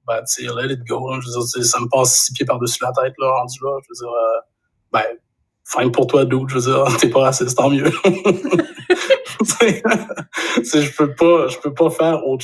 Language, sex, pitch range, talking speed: French, male, 125-145 Hz, 230 wpm